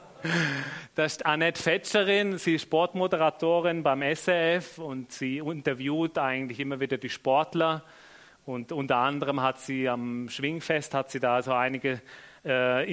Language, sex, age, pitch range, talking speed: German, male, 30-49, 130-165 Hz, 140 wpm